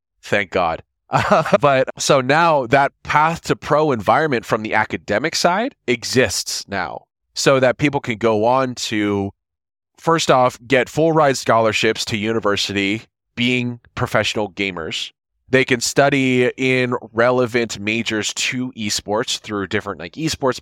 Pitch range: 100-125 Hz